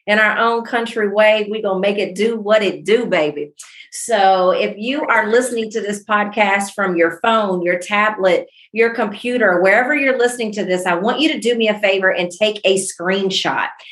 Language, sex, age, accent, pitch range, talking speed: English, female, 40-59, American, 180-225 Hz, 205 wpm